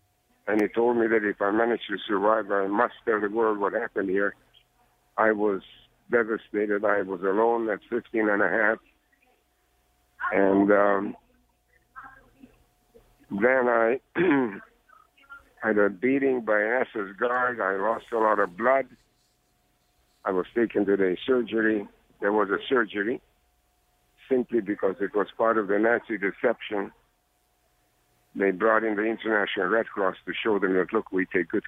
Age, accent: 60-79, American